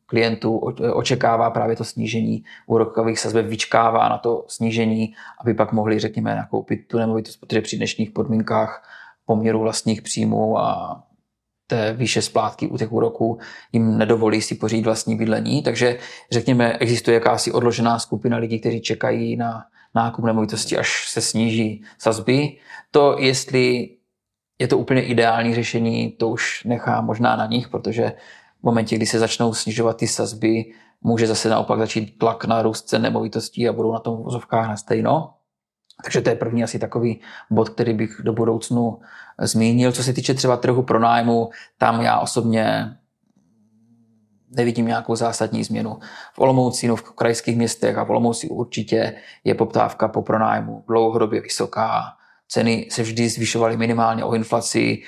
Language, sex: Czech, male